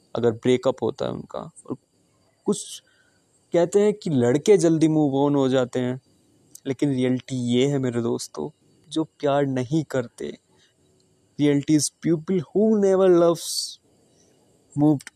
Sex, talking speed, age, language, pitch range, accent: male, 135 wpm, 20-39, Hindi, 130-160 Hz, native